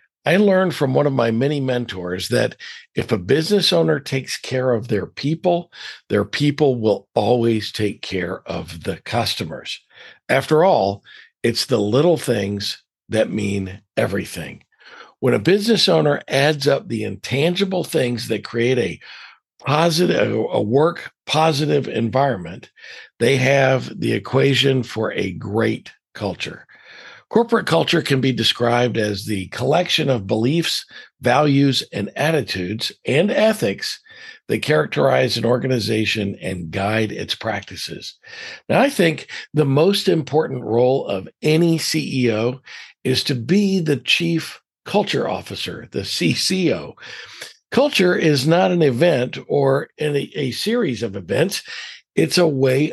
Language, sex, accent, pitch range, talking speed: English, male, American, 115-165 Hz, 130 wpm